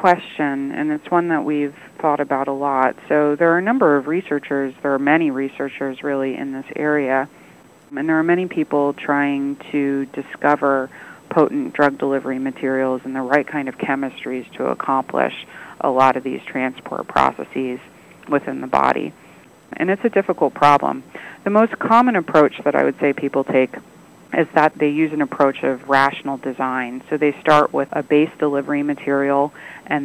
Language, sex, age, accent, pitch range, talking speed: English, female, 30-49, American, 130-150 Hz, 175 wpm